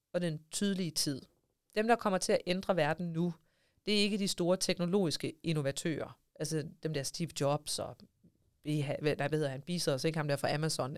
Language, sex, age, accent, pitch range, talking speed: Danish, female, 30-49, native, 155-195 Hz, 195 wpm